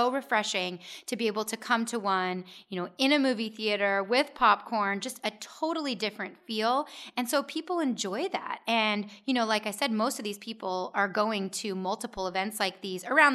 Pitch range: 190-235 Hz